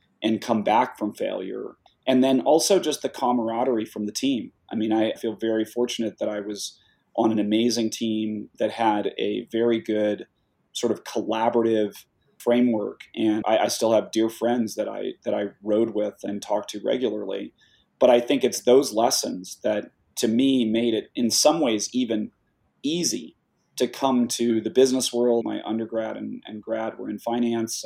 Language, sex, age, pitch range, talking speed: English, male, 30-49, 110-120 Hz, 180 wpm